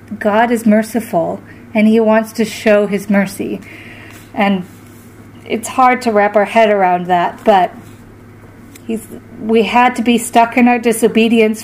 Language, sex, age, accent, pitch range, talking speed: English, female, 30-49, American, 185-220 Hz, 150 wpm